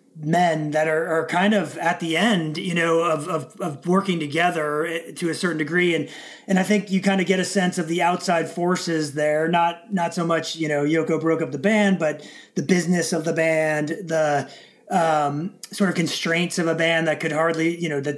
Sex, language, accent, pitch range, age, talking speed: male, English, American, 155-180 Hz, 30-49, 220 wpm